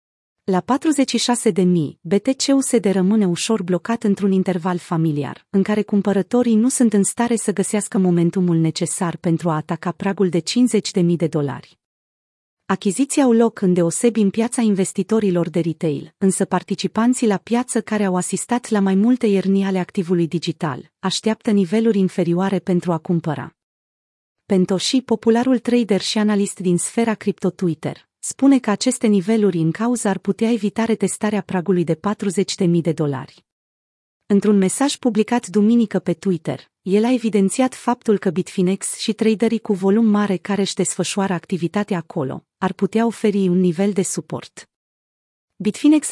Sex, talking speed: female, 145 wpm